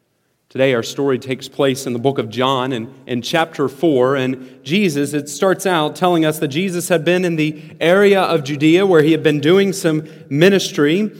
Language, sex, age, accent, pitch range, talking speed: English, male, 40-59, American, 135-190 Hz, 200 wpm